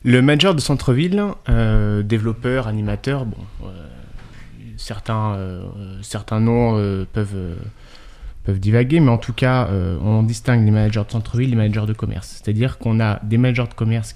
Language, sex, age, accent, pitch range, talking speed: French, male, 30-49, French, 105-125 Hz, 175 wpm